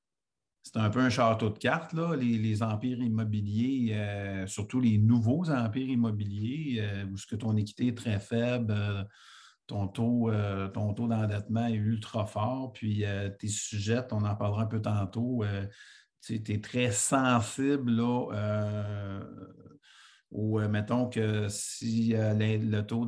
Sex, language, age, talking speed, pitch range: male, French, 50-69, 165 wpm, 105-120 Hz